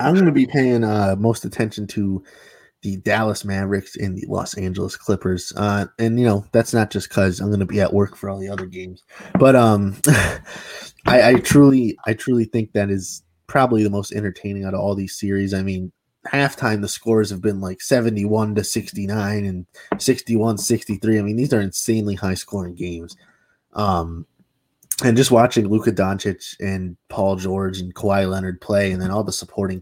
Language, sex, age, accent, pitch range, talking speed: English, male, 20-39, American, 95-115 Hz, 195 wpm